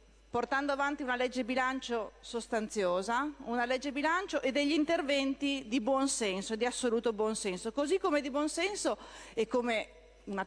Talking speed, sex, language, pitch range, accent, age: 155 wpm, female, Italian, 205-270 Hz, native, 40-59